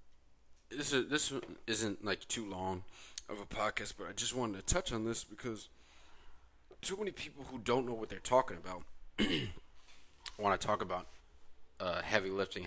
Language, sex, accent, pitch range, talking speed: English, male, American, 90-110 Hz, 160 wpm